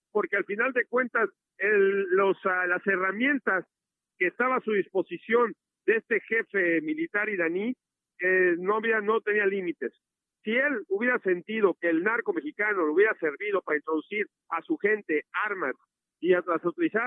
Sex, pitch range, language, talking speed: male, 175-250 Hz, Spanish, 160 wpm